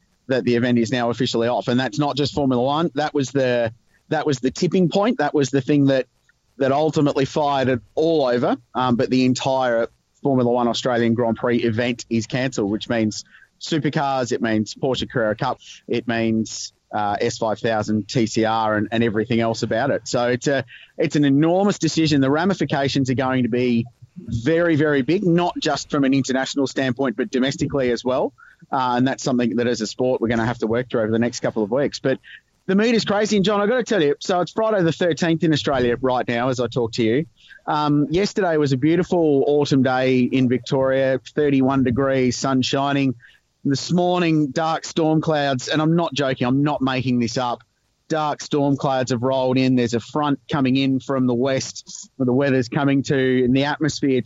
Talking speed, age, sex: 205 wpm, 30-49, male